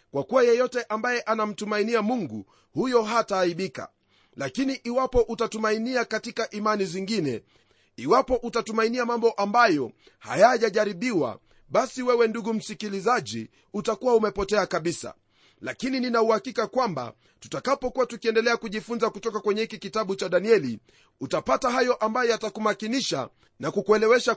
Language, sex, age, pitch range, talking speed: Swahili, male, 40-59, 190-240 Hz, 110 wpm